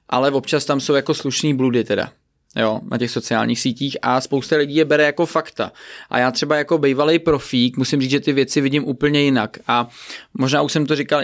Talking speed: 215 wpm